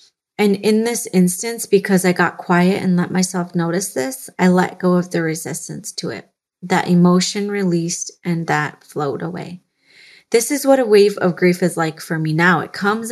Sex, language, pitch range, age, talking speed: female, English, 175-200 Hz, 30-49, 190 wpm